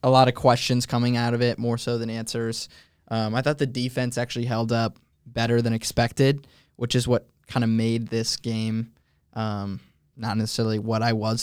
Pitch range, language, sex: 110-125 Hz, English, male